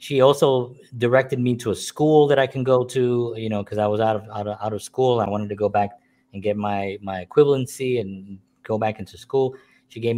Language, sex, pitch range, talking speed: English, male, 110-135 Hz, 240 wpm